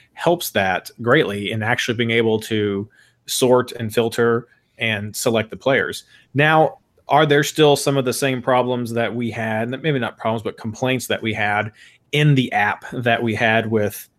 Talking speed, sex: 180 wpm, male